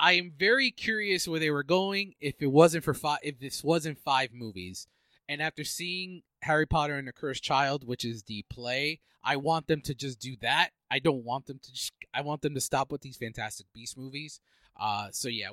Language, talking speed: English, 220 wpm